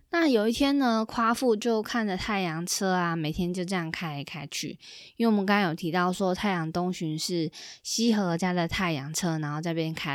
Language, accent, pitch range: Chinese, native, 180-240 Hz